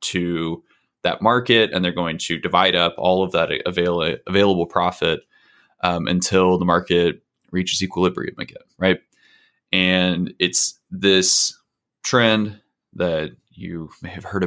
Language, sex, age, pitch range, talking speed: English, male, 20-39, 85-100 Hz, 130 wpm